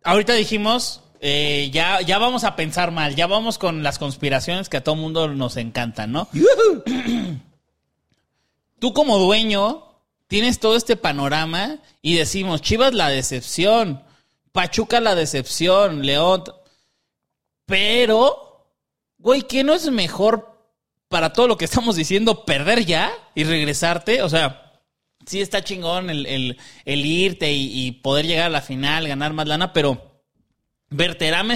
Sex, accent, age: male, Mexican, 30-49